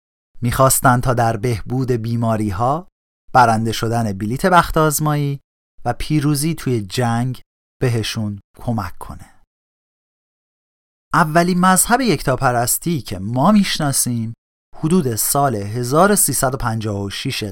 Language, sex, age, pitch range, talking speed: Persian, male, 40-59, 110-155 Hz, 95 wpm